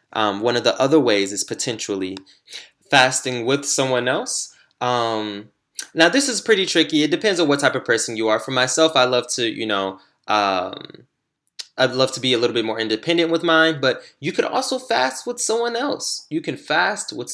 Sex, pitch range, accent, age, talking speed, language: male, 110-140 Hz, American, 20-39, 200 wpm, English